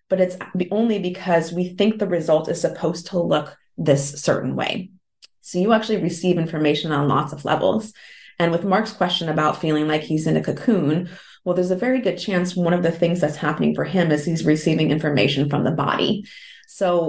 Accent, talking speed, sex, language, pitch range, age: American, 200 wpm, female, English, 155-205 Hz, 30-49